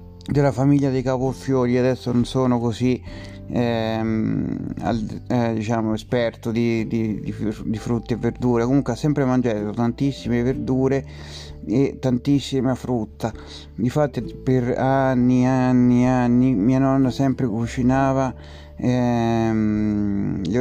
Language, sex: Italian, male